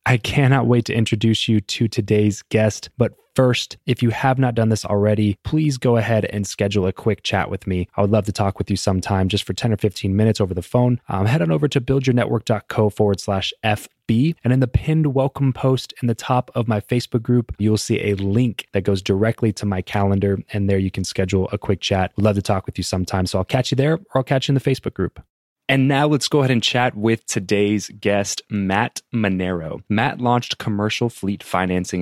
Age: 20-39